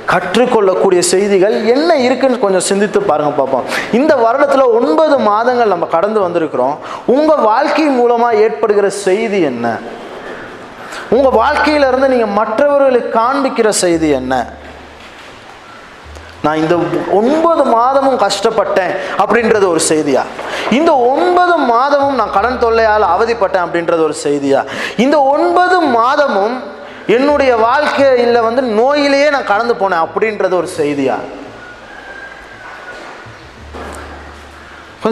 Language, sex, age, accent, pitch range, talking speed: Tamil, male, 20-39, native, 190-265 Hz, 75 wpm